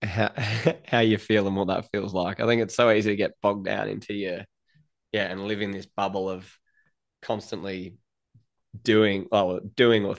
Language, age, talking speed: English, 20-39, 195 wpm